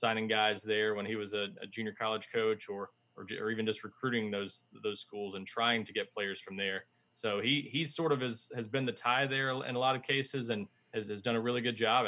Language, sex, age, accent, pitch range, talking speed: English, male, 20-39, American, 110-130 Hz, 255 wpm